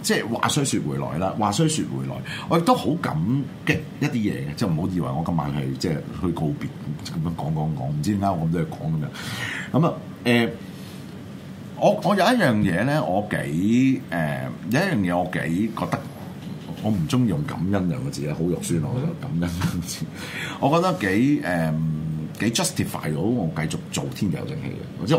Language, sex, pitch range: Chinese, male, 90-130 Hz